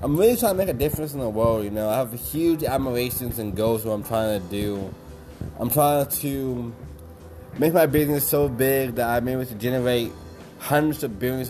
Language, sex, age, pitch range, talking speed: English, male, 20-39, 105-135 Hz, 210 wpm